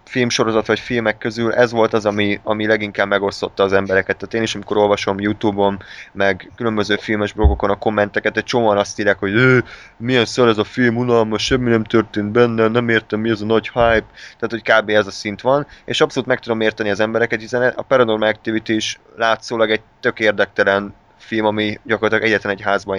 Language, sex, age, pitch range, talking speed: Hungarian, male, 20-39, 100-115 Hz, 200 wpm